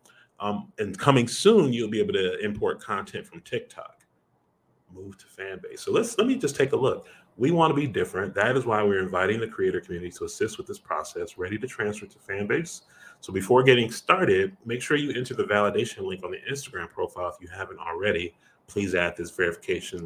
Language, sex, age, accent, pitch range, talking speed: English, male, 30-49, American, 100-155 Hz, 205 wpm